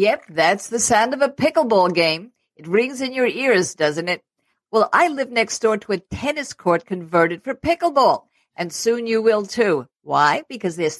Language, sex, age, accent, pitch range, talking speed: English, female, 50-69, American, 175-235 Hz, 190 wpm